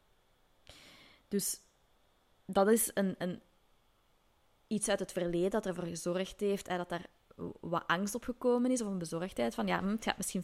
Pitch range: 185-235 Hz